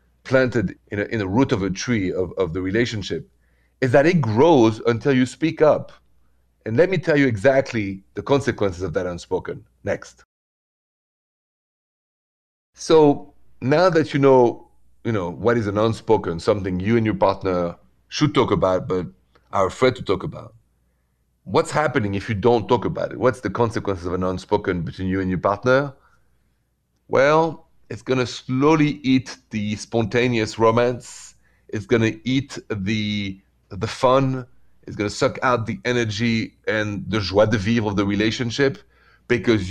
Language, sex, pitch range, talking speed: English, male, 95-125 Hz, 165 wpm